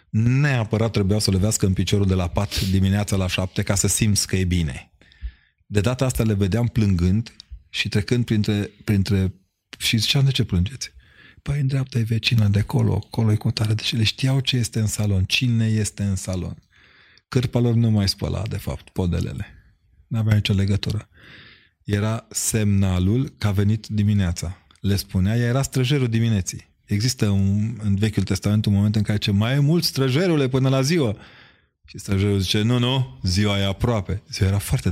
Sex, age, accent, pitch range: male, 30-49, native, 95-115 Hz